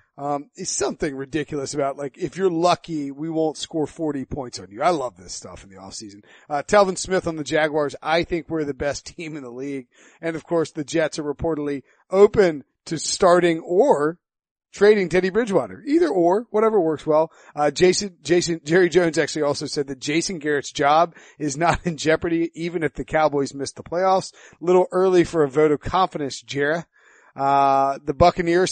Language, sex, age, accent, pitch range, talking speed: English, male, 40-59, American, 145-170 Hz, 190 wpm